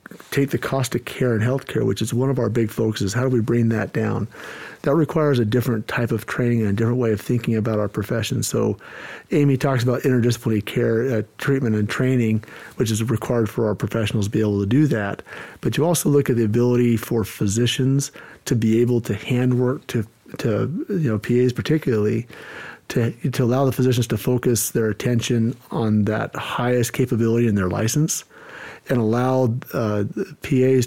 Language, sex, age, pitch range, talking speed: English, male, 50-69, 110-130 Hz, 190 wpm